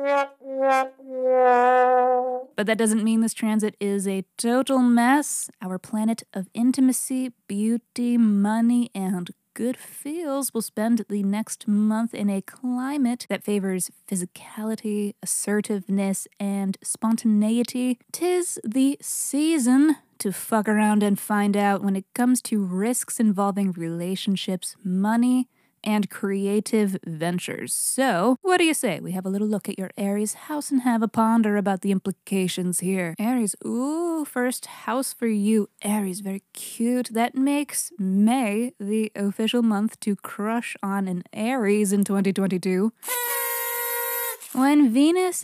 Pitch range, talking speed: 200-250 Hz, 130 wpm